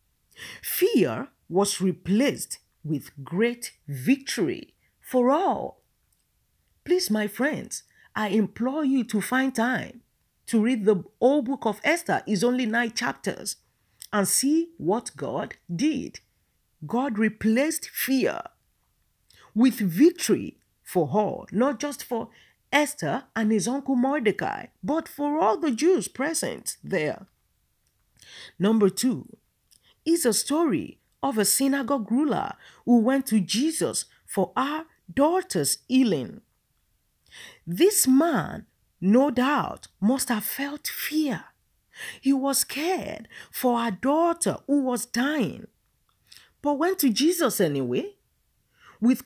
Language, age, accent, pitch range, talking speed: English, 50-69, Nigerian, 215-290 Hz, 115 wpm